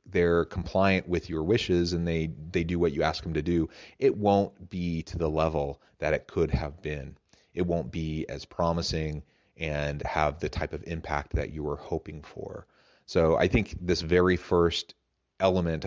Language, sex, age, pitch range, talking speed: English, male, 30-49, 75-90 Hz, 185 wpm